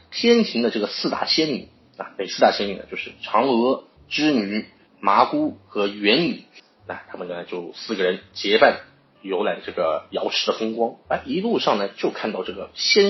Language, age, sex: Chinese, 30-49, male